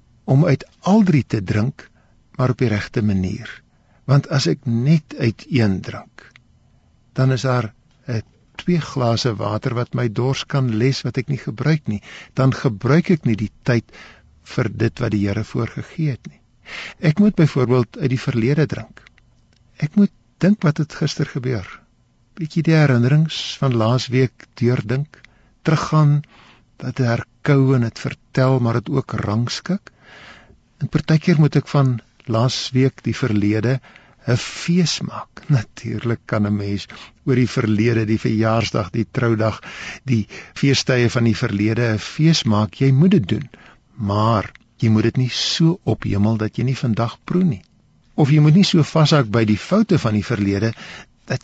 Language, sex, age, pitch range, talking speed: Dutch, male, 60-79, 110-145 Hz, 165 wpm